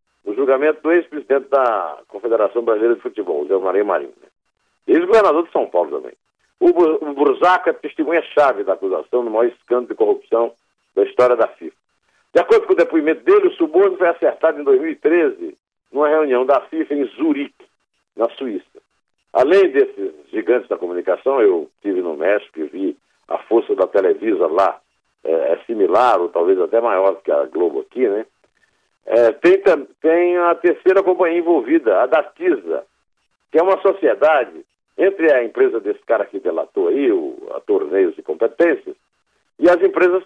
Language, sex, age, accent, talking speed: Portuguese, male, 60-79, Brazilian, 165 wpm